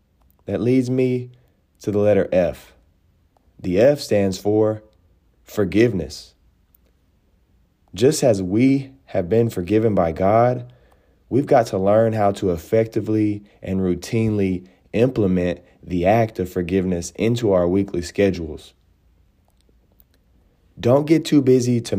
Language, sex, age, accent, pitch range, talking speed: English, male, 30-49, American, 90-120 Hz, 115 wpm